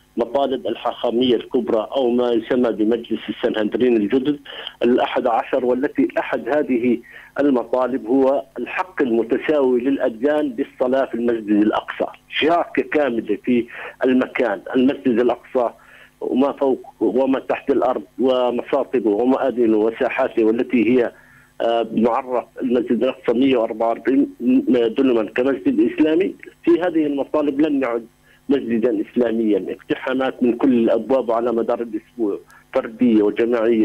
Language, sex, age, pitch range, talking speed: Arabic, male, 50-69, 115-135 Hz, 110 wpm